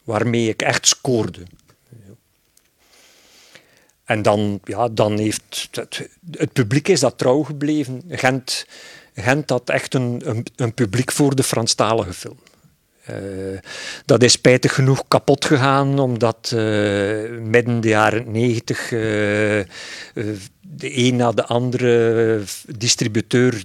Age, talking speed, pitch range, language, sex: 50-69, 115 wpm, 105-125 Hz, Dutch, male